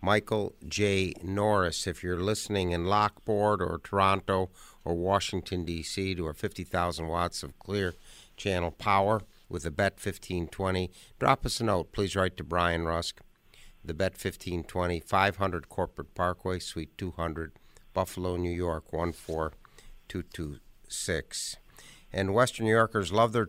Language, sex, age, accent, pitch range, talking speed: English, male, 60-79, American, 85-100 Hz, 135 wpm